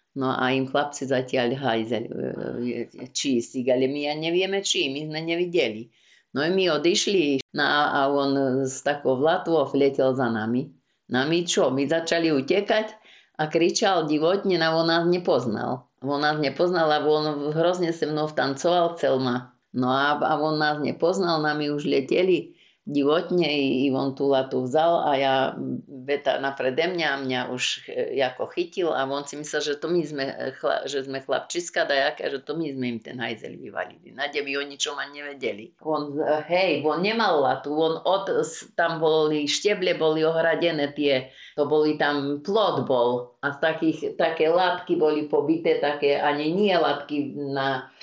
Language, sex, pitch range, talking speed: Slovak, female, 135-165 Hz, 165 wpm